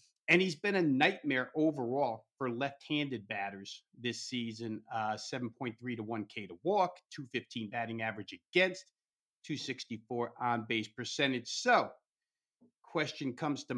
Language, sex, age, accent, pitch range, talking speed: English, male, 50-69, American, 115-140 Hz, 120 wpm